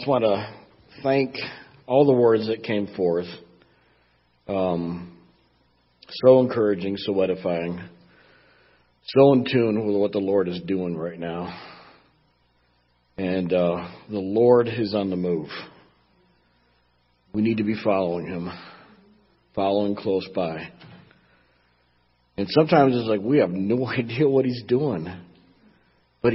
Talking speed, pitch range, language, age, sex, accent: 125 wpm, 85-110 Hz, English, 50-69, male, American